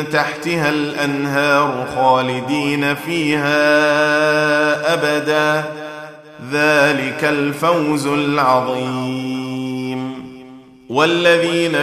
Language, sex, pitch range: Arabic, male, 145-170 Hz